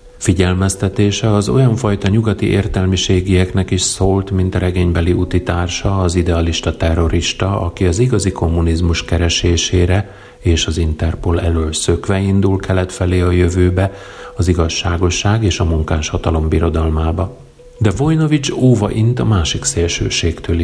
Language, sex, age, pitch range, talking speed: Hungarian, male, 40-59, 85-110 Hz, 125 wpm